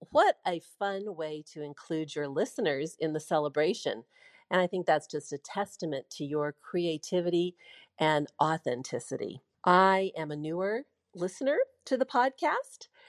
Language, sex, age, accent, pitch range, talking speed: English, female, 50-69, American, 145-185 Hz, 140 wpm